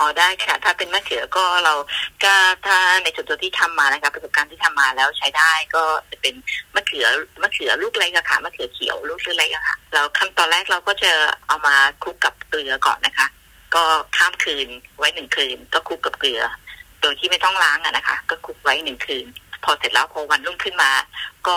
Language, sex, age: Thai, female, 20-39